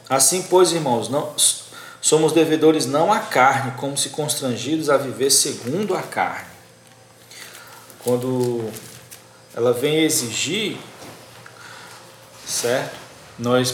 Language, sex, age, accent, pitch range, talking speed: Portuguese, male, 40-59, Brazilian, 120-155 Hz, 100 wpm